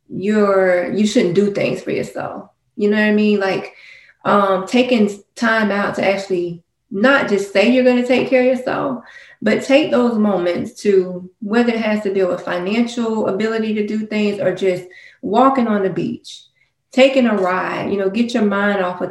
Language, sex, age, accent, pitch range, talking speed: English, female, 20-39, American, 185-220 Hz, 190 wpm